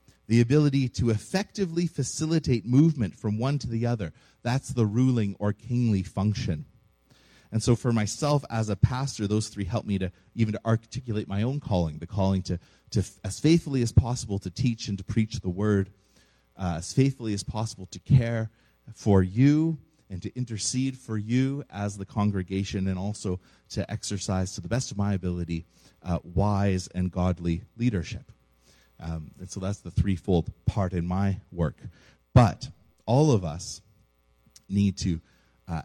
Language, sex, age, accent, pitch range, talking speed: English, male, 30-49, American, 90-120 Hz, 165 wpm